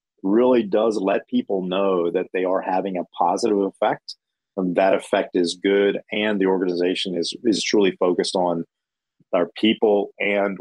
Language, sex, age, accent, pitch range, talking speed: English, male, 30-49, American, 95-110 Hz, 160 wpm